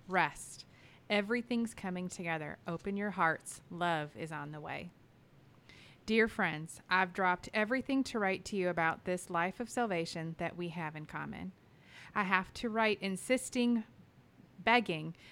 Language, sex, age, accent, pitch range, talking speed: English, female, 30-49, American, 165-210 Hz, 145 wpm